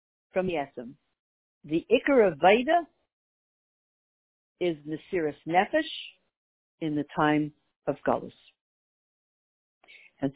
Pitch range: 160-240 Hz